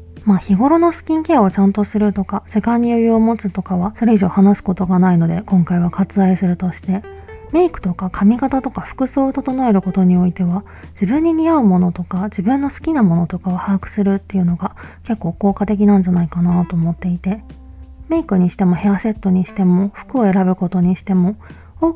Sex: female